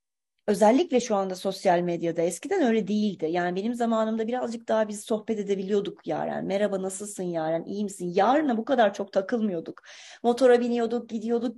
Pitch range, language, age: 200-280 Hz, Turkish, 30-49